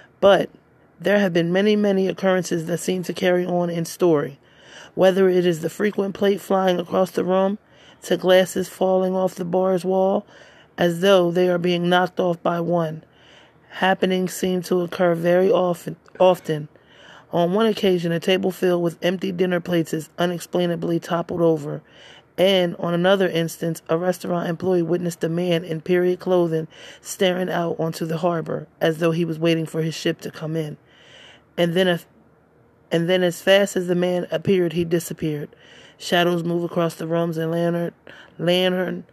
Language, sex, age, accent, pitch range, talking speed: English, male, 30-49, American, 165-185 Hz, 170 wpm